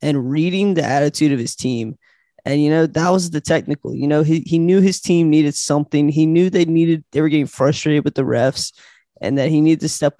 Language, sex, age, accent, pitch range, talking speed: English, male, 20-39, American, 145-170 Hz, 235 wpm